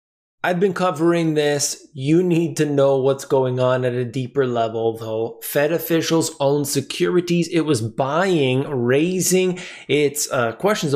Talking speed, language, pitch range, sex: 150 wpm, English, 125-160 Hz, male